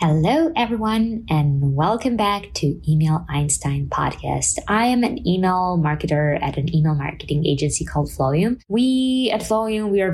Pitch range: 145-175 Hz